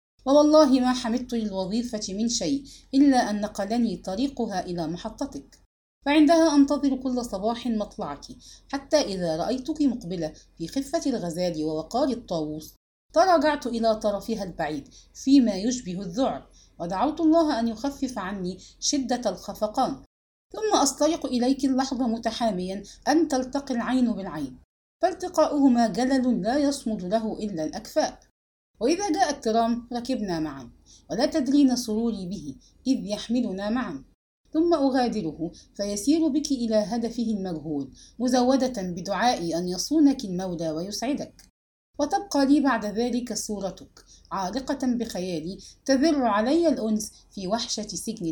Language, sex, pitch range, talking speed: English, female, 200-275 Hz, 115 wpm